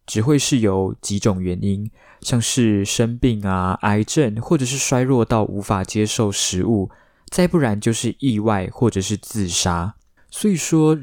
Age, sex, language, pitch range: 20-39, male, Chinese, 100-125 Hz